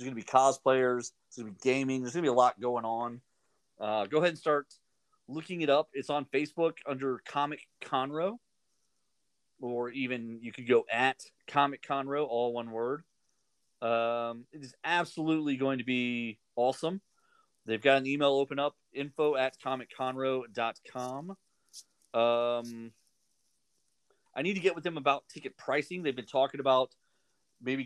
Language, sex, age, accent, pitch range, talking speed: English, male, 30-49, American, 120-145 Hz, 160 wpm